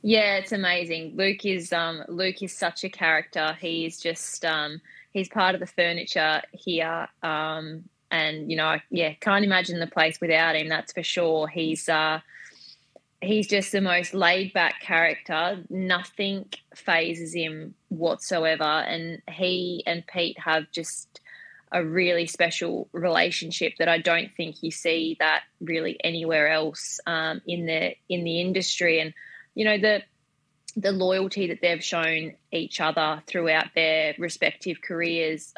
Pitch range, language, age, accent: 160-180 Hz, English, 20-39, Australian